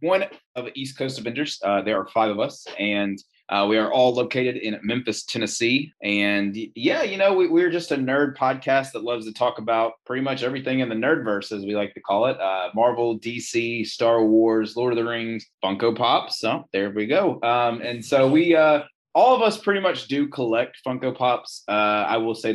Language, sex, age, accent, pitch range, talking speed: English, male, 20-39, American, 105-125 Hz, 215 wpm